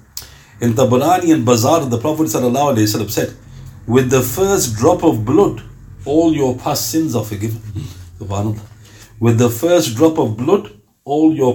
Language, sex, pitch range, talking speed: English, male, 105-140 Hz, 150 wpm